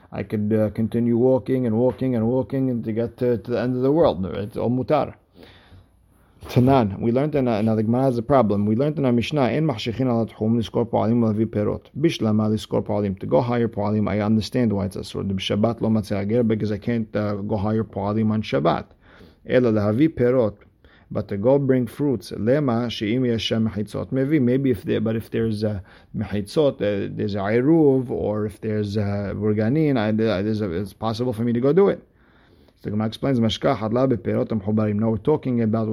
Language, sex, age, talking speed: English, male, 50-69, 185 wpm